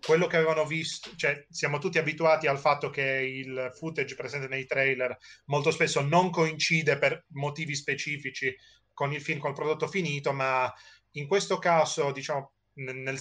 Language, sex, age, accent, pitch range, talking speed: Italian, male, 30-49, native, 130-155 Hz, 165 wpm